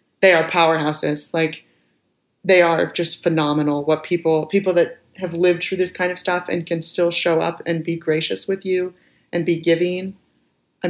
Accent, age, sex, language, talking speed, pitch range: American, 30-49, female, English, 180 wpm, 150-170 Hz